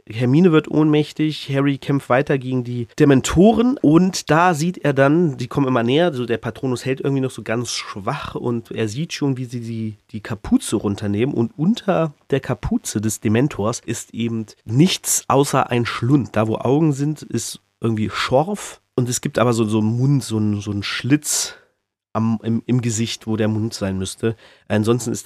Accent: German